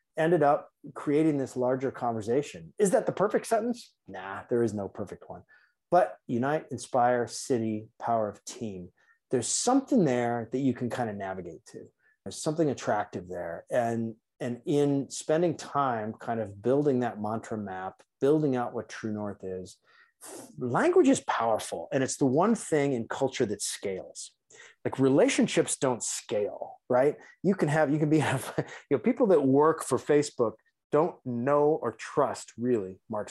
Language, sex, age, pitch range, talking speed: English, male, 30-49, 115-150 Hz, 165 wpm